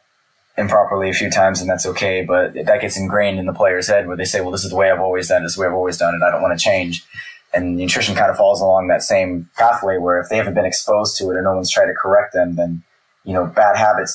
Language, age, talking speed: English, 20-39, 290 wpm